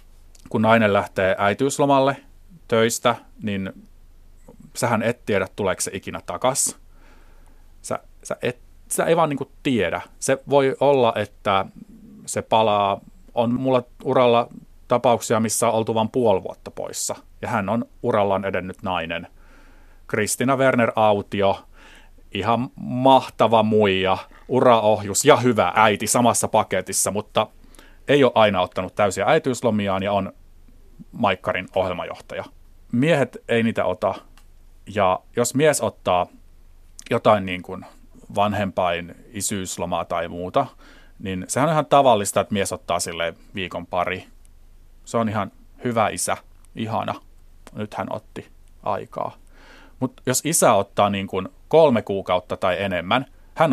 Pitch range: 95-125 Hz